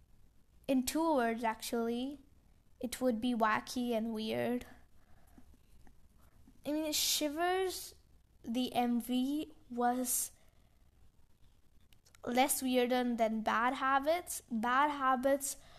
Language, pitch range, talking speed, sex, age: English, 230-270 Hz, 85 wpm, female, 10-29